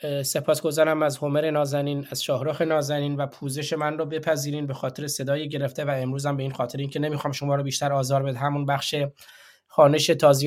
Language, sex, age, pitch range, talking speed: Persian, male, 20-39, 140-155 Hz, 200 wpm